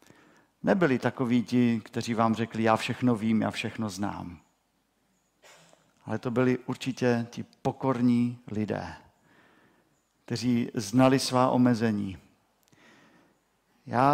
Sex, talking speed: male, 100 wpm